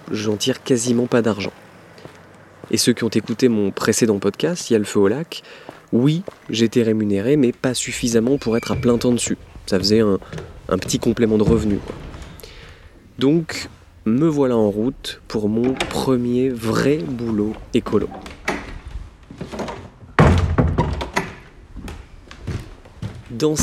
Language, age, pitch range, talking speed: French, 20-39, 110-140 Hz, 130 wpm